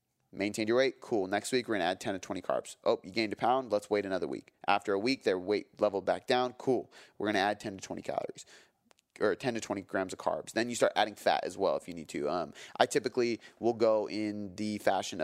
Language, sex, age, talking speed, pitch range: English, male, 30-49, 250 wpm, 95-110 Hz